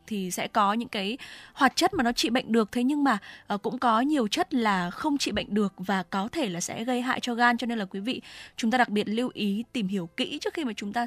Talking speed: 280 wpm